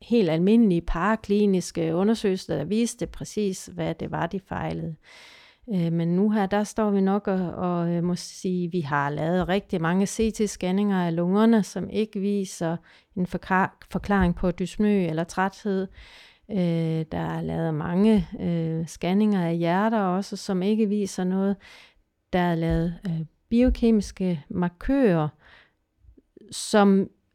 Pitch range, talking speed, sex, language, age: 175-220 Hz, 125 wpm, female, Danish, 40-59